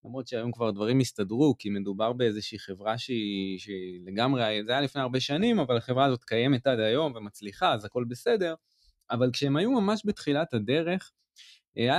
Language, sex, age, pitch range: Hebrew, male, 20-39, 115-170 Hz